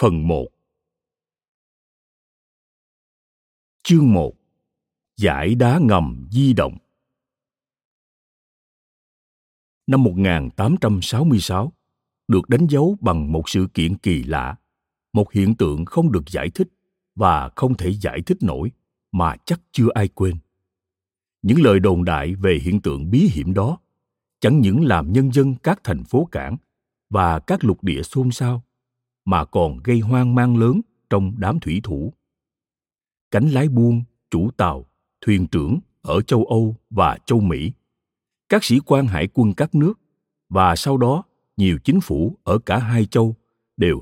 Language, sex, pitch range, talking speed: Vietnamese, male, 95-130 Hz, 140 wpm